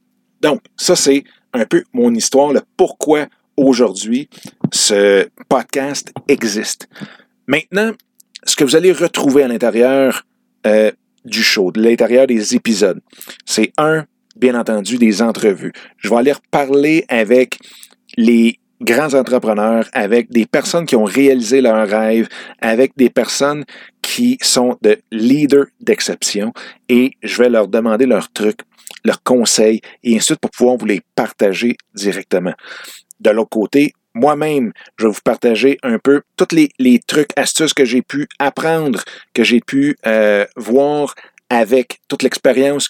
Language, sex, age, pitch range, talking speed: French, male, 50-69, 115-145 Hz, 140 wpm